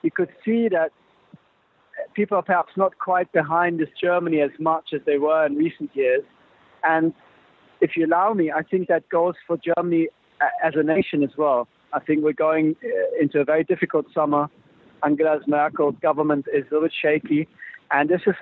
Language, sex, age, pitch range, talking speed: English, male, 40-59, 145-175 Hz, 180 wpm